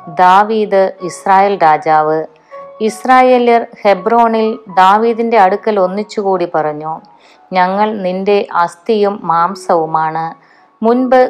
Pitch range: 170-210 Hz